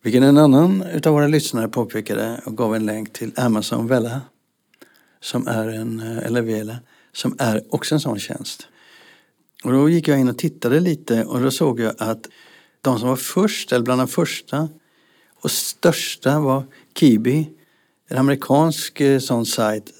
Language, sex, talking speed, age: Swedish, male, 160 wpm, 60-79